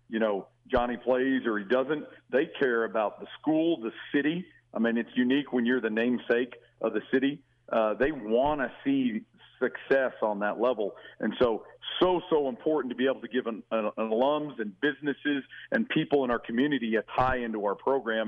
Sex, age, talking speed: male, 50-69, 195 wpm